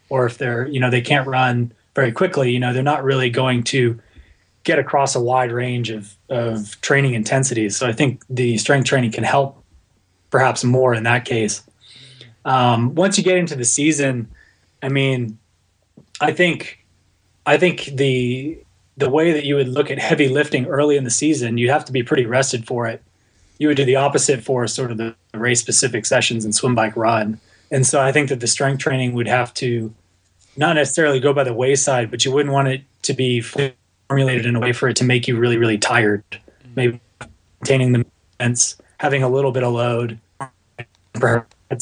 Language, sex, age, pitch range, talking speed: English, male, 20-39, 115-135 Hz, 195 wpm